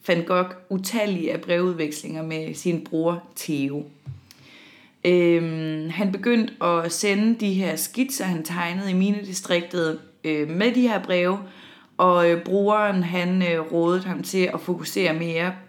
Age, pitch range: 30-49, 160-190 Hz